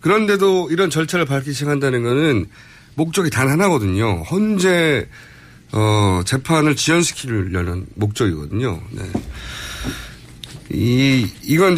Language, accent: Korean, native